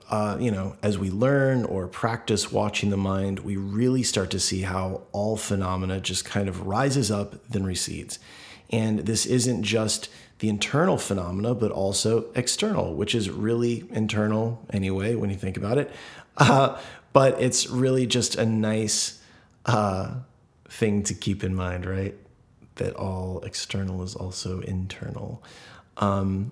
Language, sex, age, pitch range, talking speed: English, male, 30-49, 95-115 Hz, 150 wpm